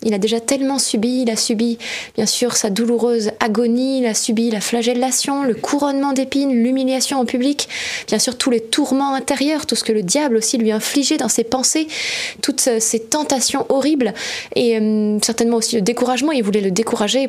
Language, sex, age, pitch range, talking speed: French, female, 20-39, 225-265 Hz, 190 wpm